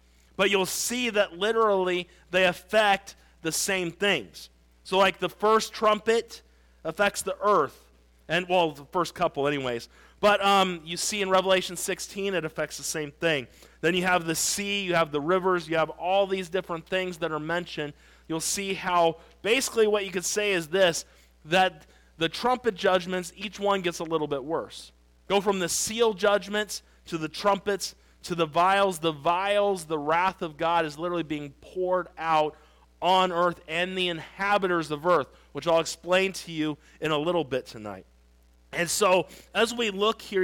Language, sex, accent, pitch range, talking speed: English, male, American, 155-195 Hz, 180 wpm